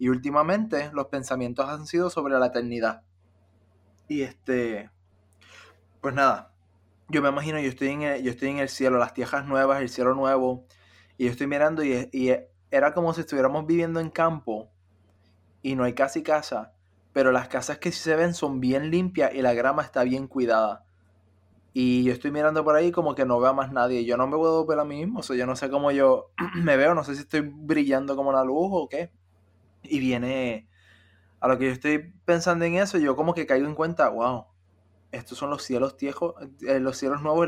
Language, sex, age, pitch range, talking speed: Spanish, male, 20-39, 120-150 Hz, 205 wpm